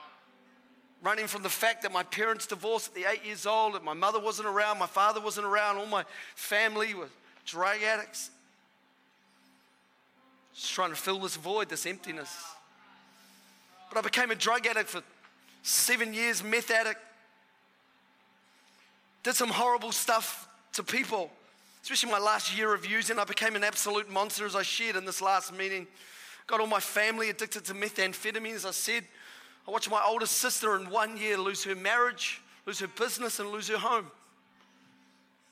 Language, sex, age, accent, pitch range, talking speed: English, male, 30-49, Australian, 190-230 Hz, 165 wpm